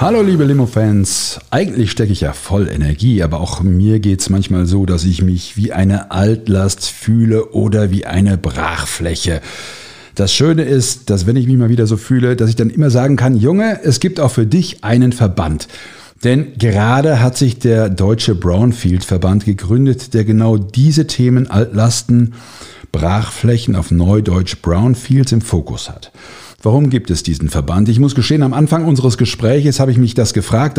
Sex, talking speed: male, 175 wpm